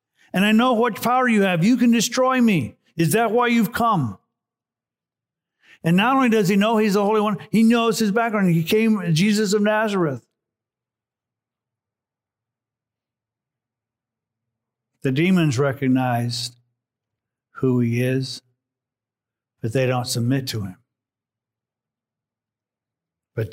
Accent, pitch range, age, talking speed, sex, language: American, 120-145 Hz, 50-69, 120 wpm, male, English